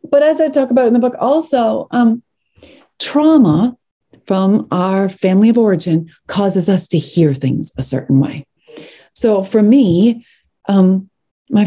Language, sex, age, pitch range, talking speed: English, female, 40-59, 155-215 Hz, 150 wpm